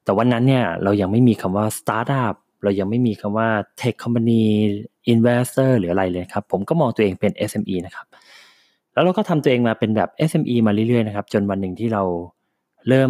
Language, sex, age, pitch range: Thai, male, 20-39, 95-125 Hz